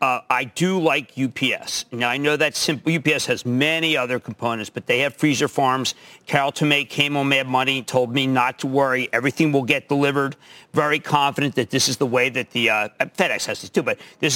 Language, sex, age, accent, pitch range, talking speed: English, male, 50-69, American, 130-165 Hz, 215 wpm